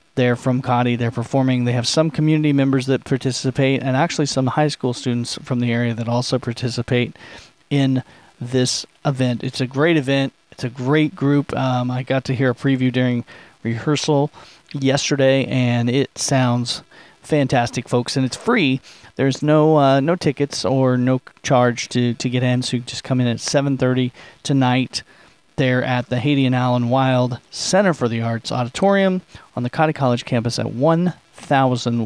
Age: 40-59